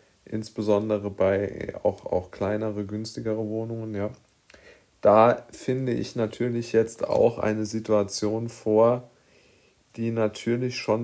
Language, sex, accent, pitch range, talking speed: German, male, German, 105-115 Hz, 105 wpm